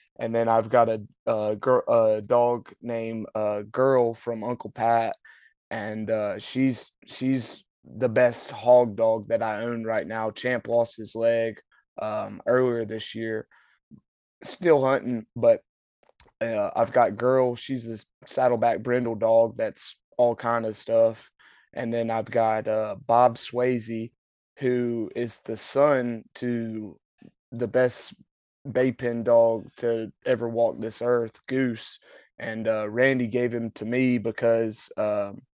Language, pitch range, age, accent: English, 110-125 Hz, 20-39, American